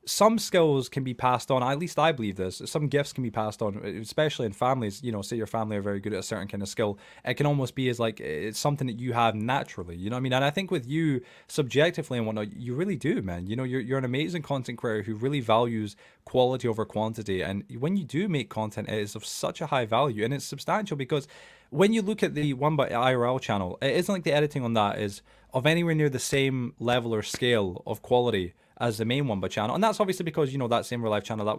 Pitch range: 110-145 Hz